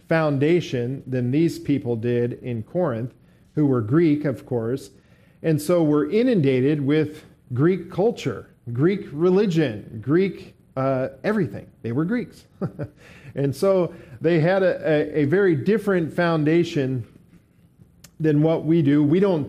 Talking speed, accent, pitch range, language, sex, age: 130 wpm, American, 130-160 Hz, English, male, 50-69